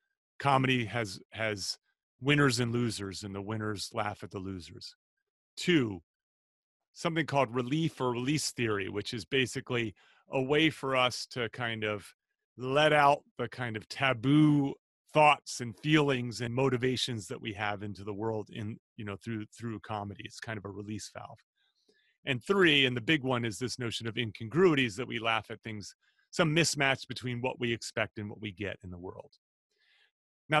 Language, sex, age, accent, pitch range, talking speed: English, male, 30-49, American, 110-145 Hz, 175 wpm